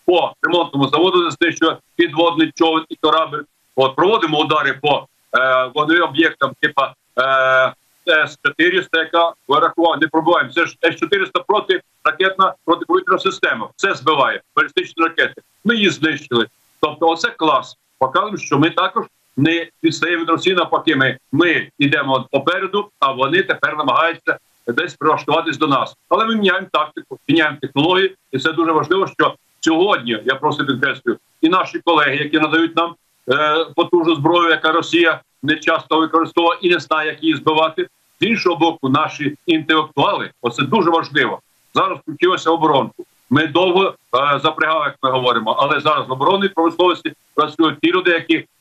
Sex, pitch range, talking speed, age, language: male, 155-185 Hz, 150 wpm, 50-69, Ukrainian